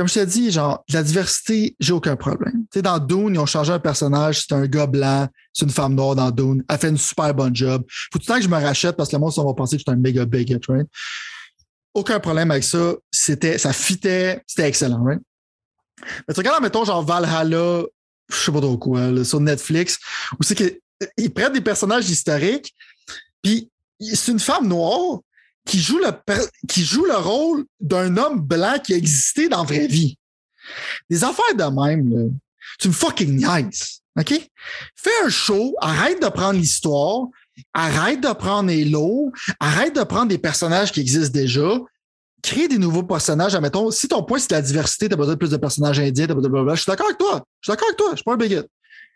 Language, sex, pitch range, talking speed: French, male, 145-220 Hz, 210 wpm